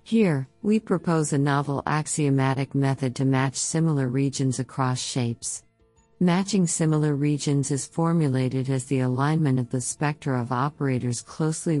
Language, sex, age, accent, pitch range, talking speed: English, female, 50-69, American, 125-150 Hz, 135 wpm